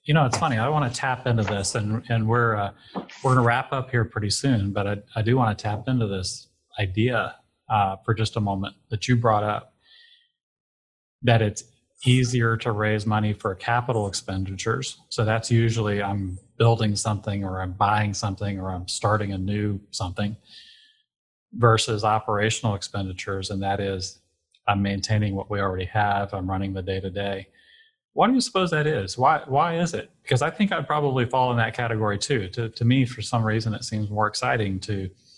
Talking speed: 195 wpm